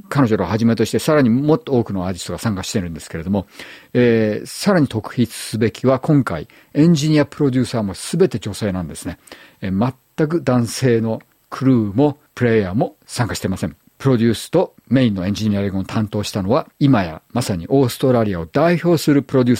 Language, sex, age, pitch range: Japanese, male, 50-69, 100-135 Hz